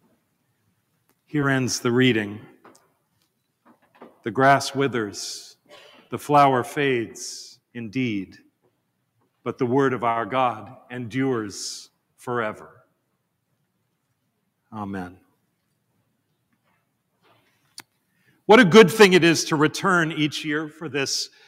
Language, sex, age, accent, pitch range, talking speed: English, male, 50-69, American, 125-170 Hz, 90 wpm